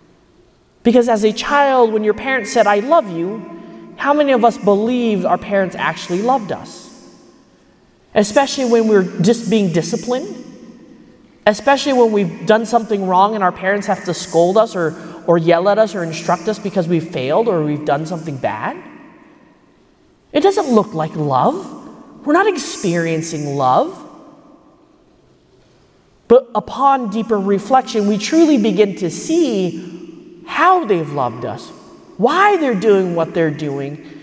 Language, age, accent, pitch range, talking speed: English, 30-49, American, 190-275 Hz, 145 wpm